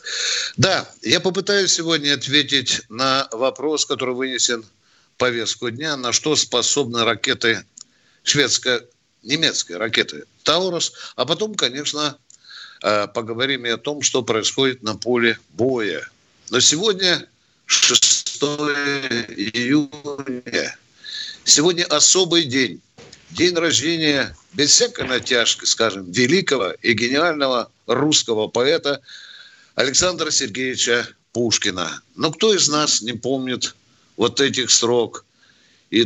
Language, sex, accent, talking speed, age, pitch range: Russian, male, native, 105 wpm, 60-79, 120-155 Hz